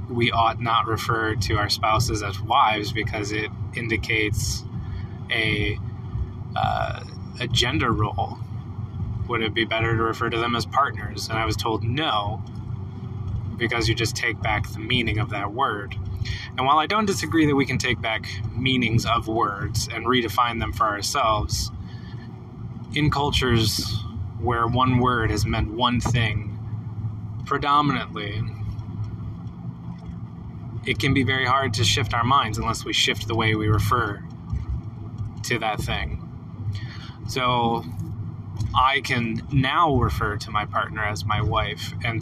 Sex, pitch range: male, 105-115 Hz